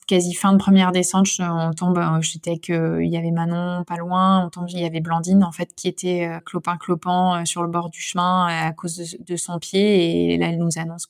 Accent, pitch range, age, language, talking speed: French, 165-185 Hz, 20-39, French, 240 wpm